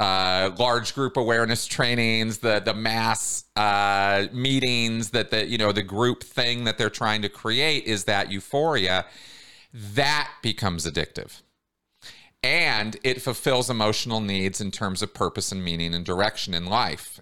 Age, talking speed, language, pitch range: 40-59, 150 wpm, English, 90-110 Hz